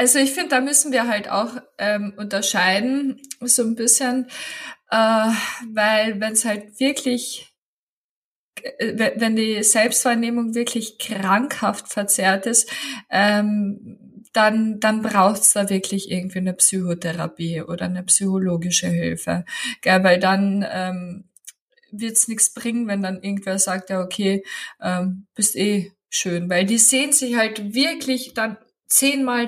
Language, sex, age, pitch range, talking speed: German, female, 20-39, 200-245 Hz, 135 wpm